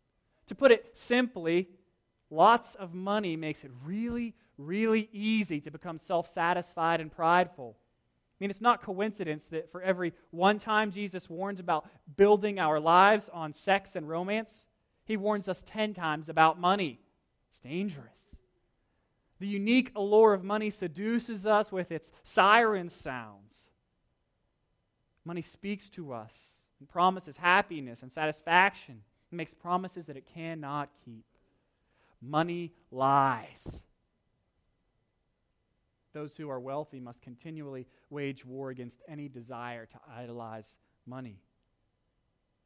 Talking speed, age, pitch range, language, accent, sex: 125 wpm, 30-49, 140-200 Hz, English, American, male